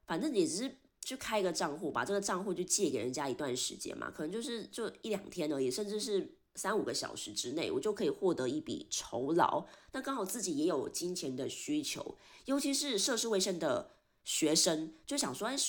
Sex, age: female, 20-39